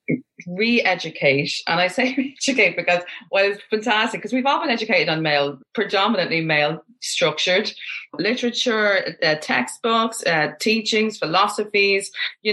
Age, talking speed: 30-49, 125 wpm